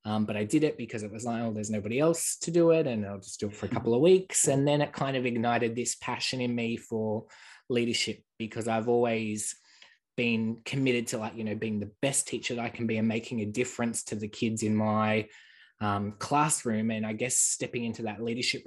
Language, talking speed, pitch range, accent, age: English, 235 wpm, 105-125 Hz, Australian, 20-39